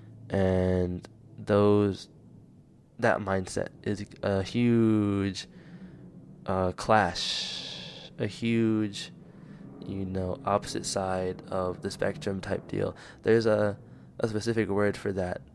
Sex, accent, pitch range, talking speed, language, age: male, American, 95-120 Hz, 105 wpm, English, 20-39